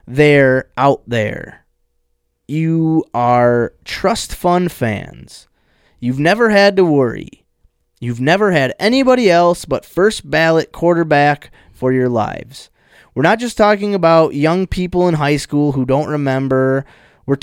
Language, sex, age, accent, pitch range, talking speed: English, male, 20-39, American, 130-170 Hz, 135 wpm